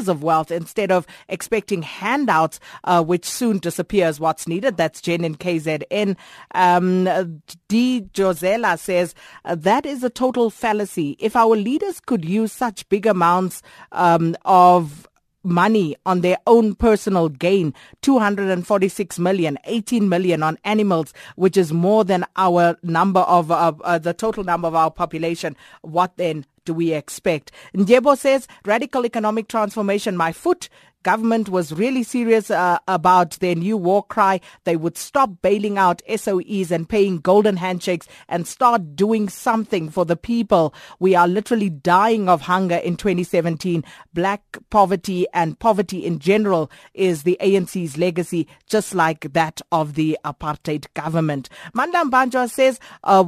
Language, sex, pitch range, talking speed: English, female, 170-220 Hz, 145 wpm